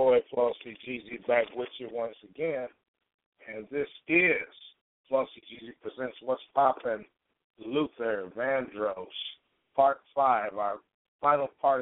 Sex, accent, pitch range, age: male, American, 110-130 Hz, 50-69